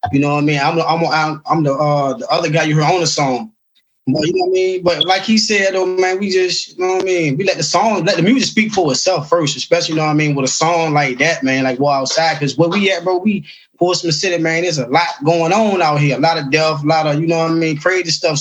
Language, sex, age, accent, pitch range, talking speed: English, male, 20-39, American, 155-185 Hz, 305 wpm